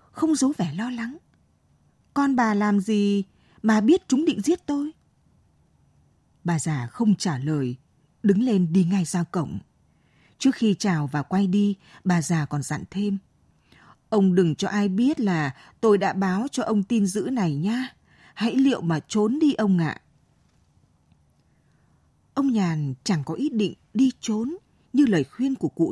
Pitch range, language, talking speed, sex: 175-235 Hz, Vietnamese, 170 wpm, female